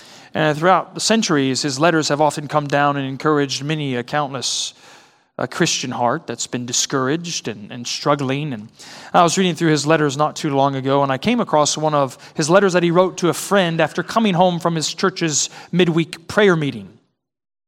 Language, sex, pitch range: English, male, 140-185 Hz